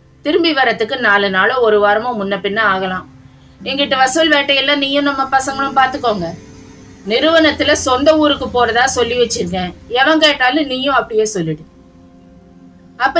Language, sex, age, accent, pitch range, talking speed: Tamil, female, 20-39, native, 205-290 Hz, 110 wpm